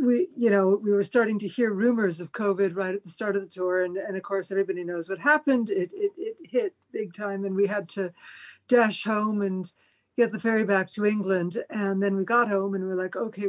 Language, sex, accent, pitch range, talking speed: English, female, American, 190-230 Hz, 245 wpm